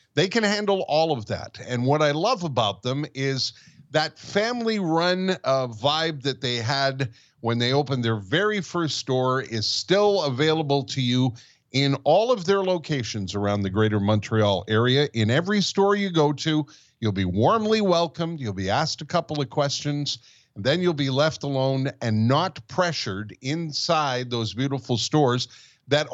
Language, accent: English, American